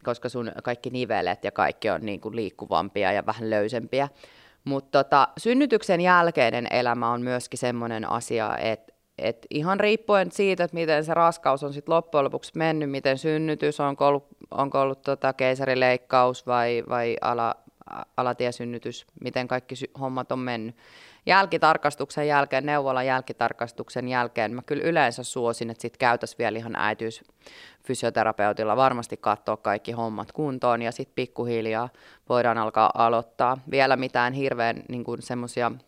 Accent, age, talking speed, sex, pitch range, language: native, 30-49, 140 wpm, female, 115-135 Hz, Finnish